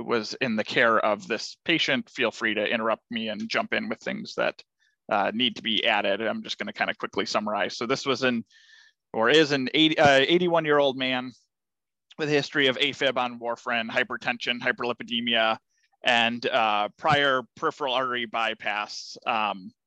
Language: English